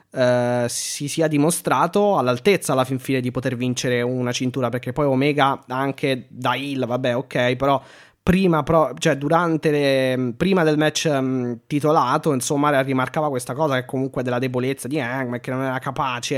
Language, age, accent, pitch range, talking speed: Italian, 20-39, native, 130-165 Hz, 170 wpm